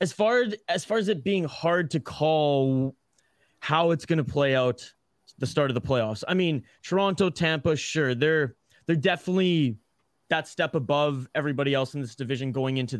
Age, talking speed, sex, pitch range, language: 20-39, 185 wpm, male, 130-160 Hz, English